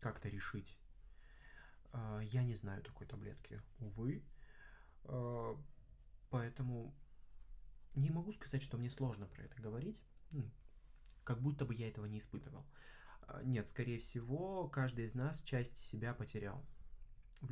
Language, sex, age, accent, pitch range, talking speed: Russian, male, 20-39, native, 110-140 Hz, 120 wpm